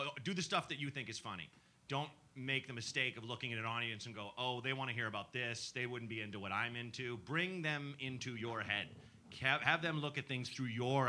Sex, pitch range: male, 115-145 Hz